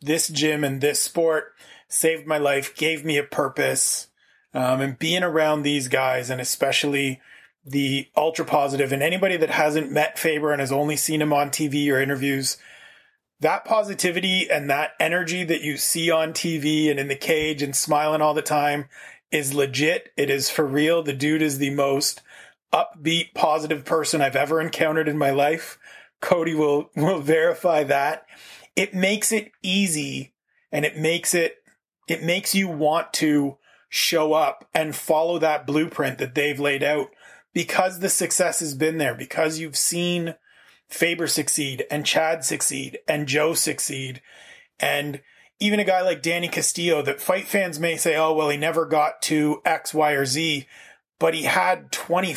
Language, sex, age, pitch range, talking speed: English, male, 30-49, 145-165 Hz, 170 wpm